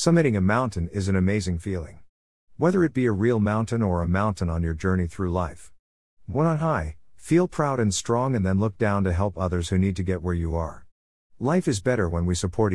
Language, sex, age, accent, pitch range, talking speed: English, male, 50-69, American, 85-115 Hz, 225 wpm